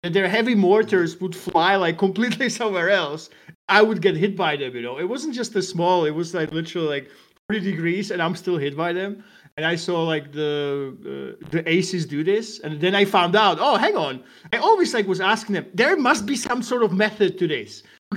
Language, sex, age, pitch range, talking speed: English, male, 30-49, 160-205 Hz, 230 wpm